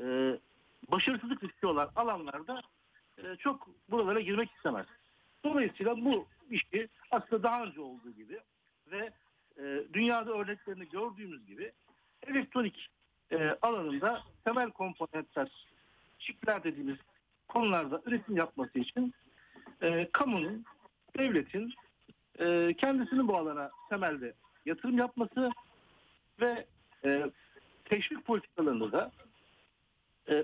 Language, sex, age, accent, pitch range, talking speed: Turkish, male, 60-79, native, 165-240 Hz, 100 wpm